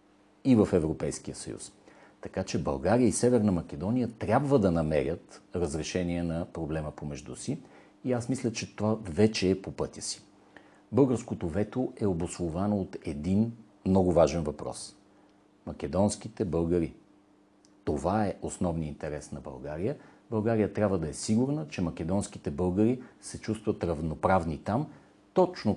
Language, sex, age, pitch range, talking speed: Bulgarian, male, 50-69, 85-110 Hz, 135 wpm